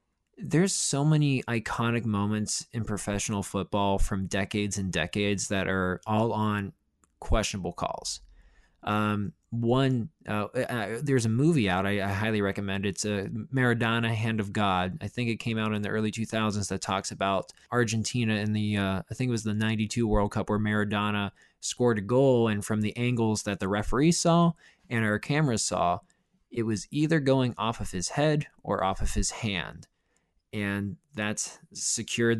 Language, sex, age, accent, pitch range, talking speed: English, male, 20-39, American, 100-125 Hz, 170 wpm